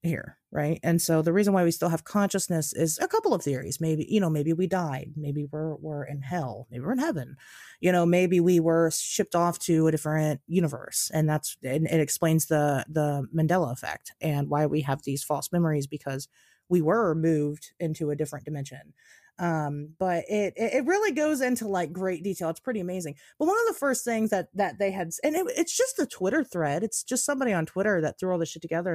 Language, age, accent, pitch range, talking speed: English, 30-49, American, 155-235 Hz, 225 wpm